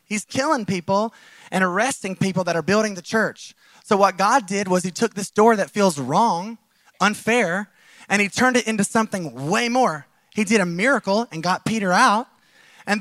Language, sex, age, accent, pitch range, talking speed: English, male, 20-39, American, 185-230 Hz, 190 wpm